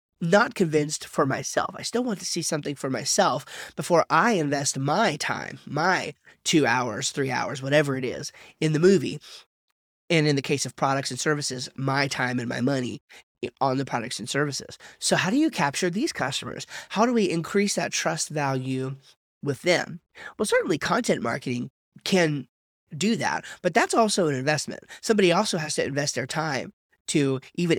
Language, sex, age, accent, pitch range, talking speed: English, male, 30-49, American, 135-180 Hz, 180 wpm